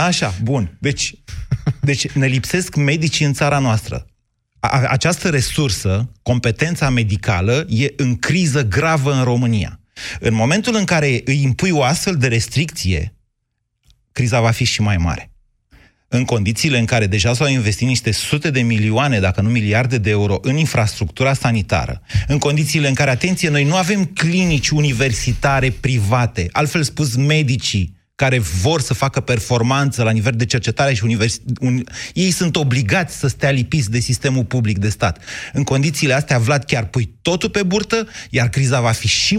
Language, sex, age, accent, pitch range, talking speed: Romanian, male, 30-49, native, 110-140 Hz, 160 wpm